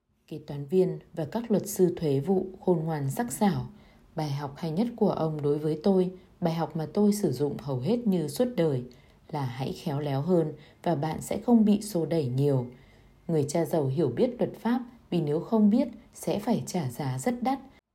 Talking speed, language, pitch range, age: 210 wpm, Vietnamese, 145-205 Hz, 20-39